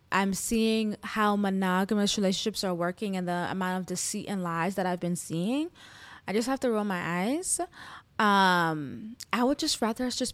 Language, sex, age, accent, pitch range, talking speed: English, female, 20-39, American, 190-225 Hz, 180 wpm